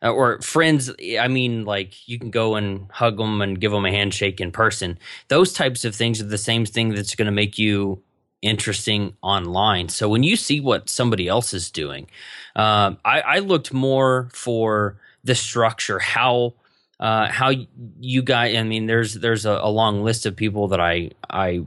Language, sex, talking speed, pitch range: English, male, 190 wpm, 100-125 Hz